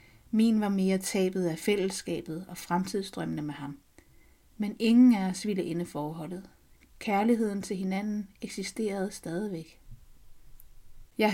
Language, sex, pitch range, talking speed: Danish, female, 185-220 Hz, 115 wpm